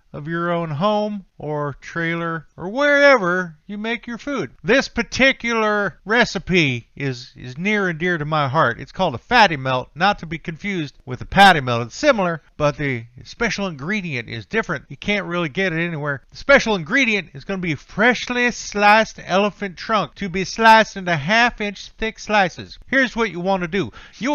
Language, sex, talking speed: English, male, 180 wpm